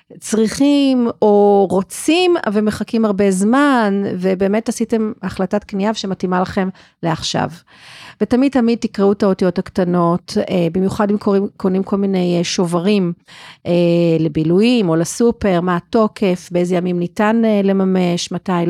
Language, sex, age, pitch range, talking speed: Hebrew, female, 40-59, 180-220 Hz, 110 wpm